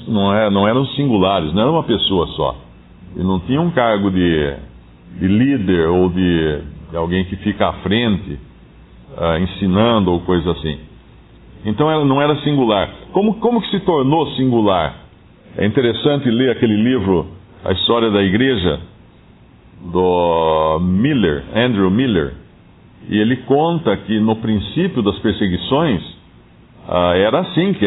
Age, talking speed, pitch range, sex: 50-69, 140 wpm, 90-135 Hz, male